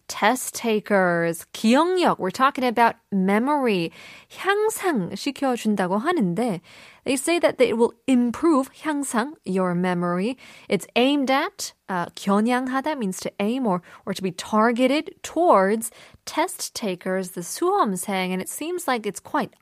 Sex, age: female, 20-39